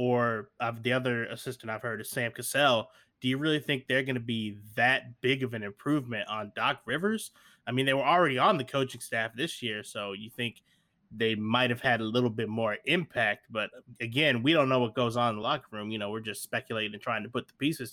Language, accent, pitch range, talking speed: English, American, 115-140 Hz, 240 wpm